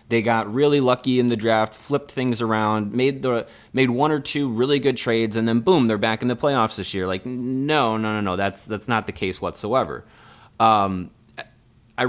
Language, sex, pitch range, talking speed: English, male, 100-120 Hz, 210 wpm